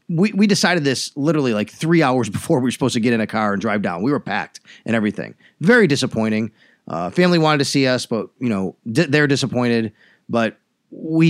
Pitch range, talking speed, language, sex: 125-160 Hz, 220 wpm, English, male